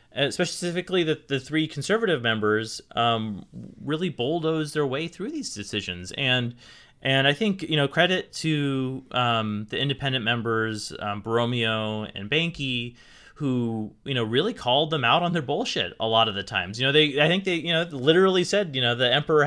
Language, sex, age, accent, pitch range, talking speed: English, male, 30-49, American, 120-165 Hz, 180 wpm